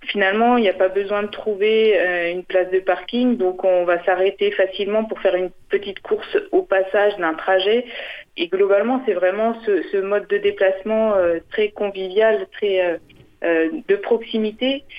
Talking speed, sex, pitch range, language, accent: 175 wpm, female, 180-235 Hz, French, French